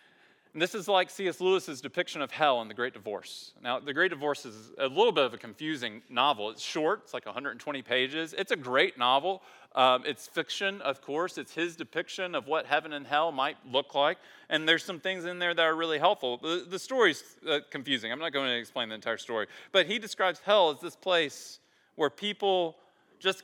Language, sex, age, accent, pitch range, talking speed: English, male, 40-59, American, 140-185 Hz, 210 wpm